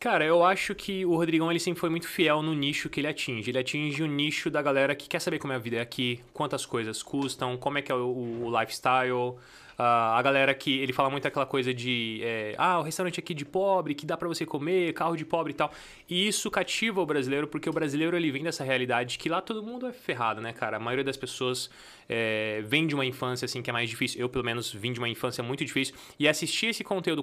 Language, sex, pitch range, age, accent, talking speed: Portuguese, male, 120-155 Hz, 20-39, Brazilian, 255 wpm